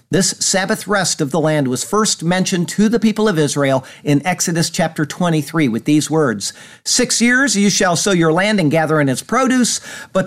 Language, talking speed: English, 200 wpm